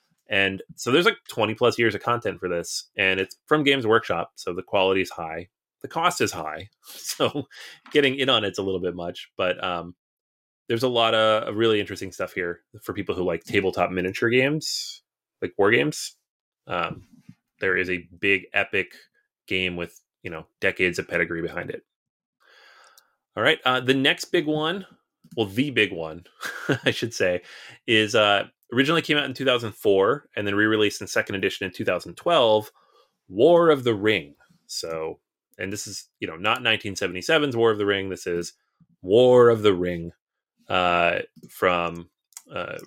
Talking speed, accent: 170 wpm, American